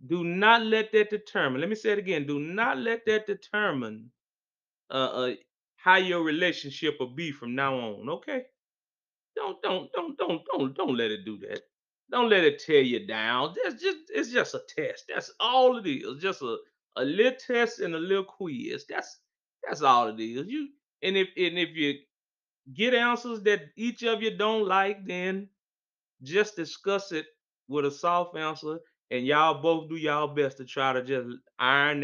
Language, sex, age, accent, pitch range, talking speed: English, male, 30-49, American, 150-220 Hz, 185 wpm